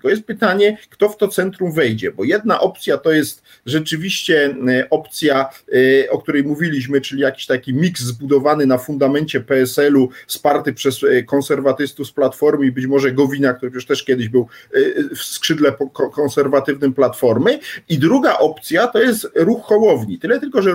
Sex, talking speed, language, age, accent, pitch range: male, 155 wpm, Polish, 40-59, native, 145-200 Hz